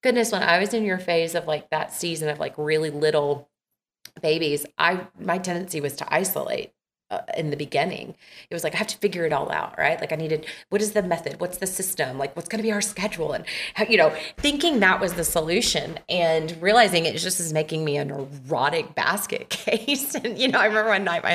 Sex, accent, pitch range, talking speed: female, American, 170-275 Hz, 230 wpm